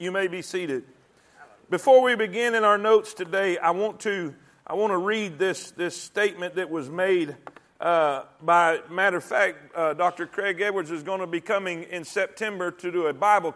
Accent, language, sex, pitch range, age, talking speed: American, English, male, 180-245 Hz, 40-59, 195 wpm